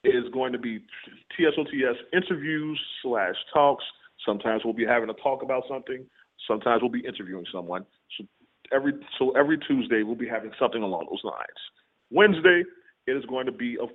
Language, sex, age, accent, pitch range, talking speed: English, male, 40-59, American, 115-155 Hz, 175 wpm